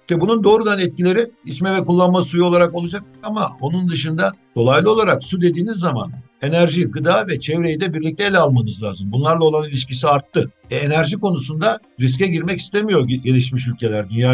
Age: 60-79